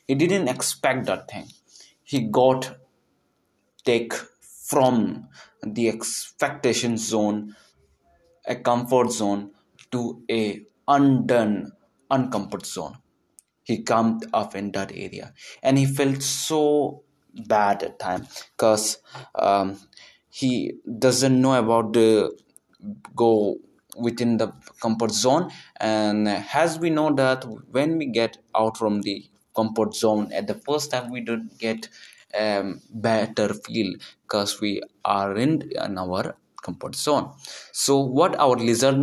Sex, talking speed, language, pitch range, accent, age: male, 125 wpm, Hindi, 105-130 Hz, native, 20-39